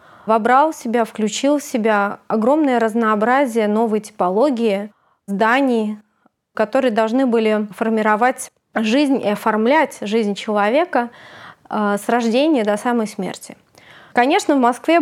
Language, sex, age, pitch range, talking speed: Russian, female, 20-39, 215-265 Hz, 110 wpm